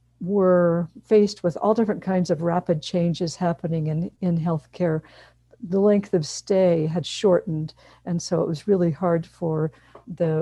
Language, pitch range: English, 165-190 Hz